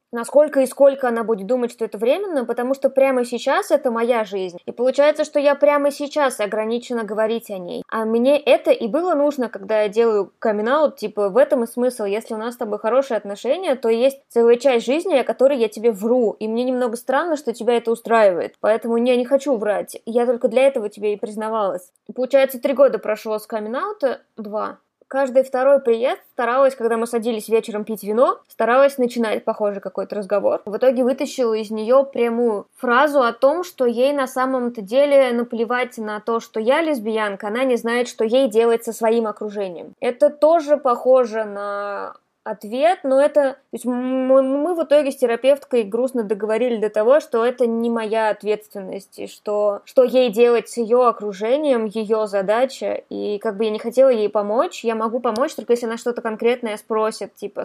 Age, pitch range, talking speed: 20-39, 220-270 Hz, 185 wpm